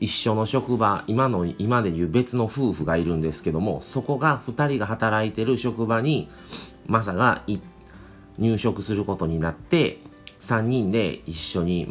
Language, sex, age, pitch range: Japanese, male, 40-59, 90-120 Hz